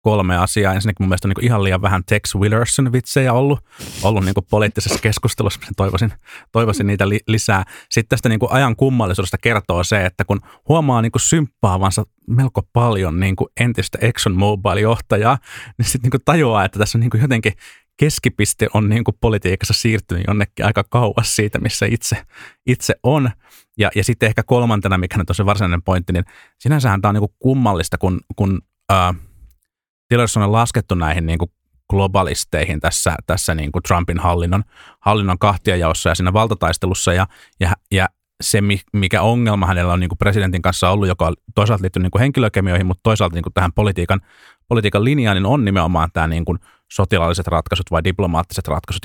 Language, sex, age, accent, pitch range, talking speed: Finnish, male, 30-49, native, 90-115 Hz, 170 wpm